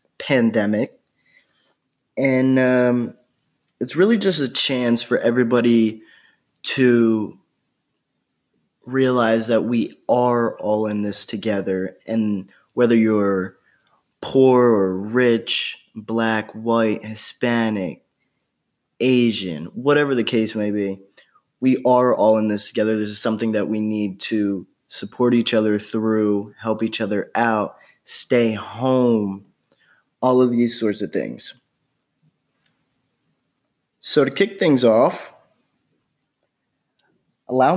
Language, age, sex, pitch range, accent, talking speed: English, 20-39, male, 105-125 Hz, American, 110 wpm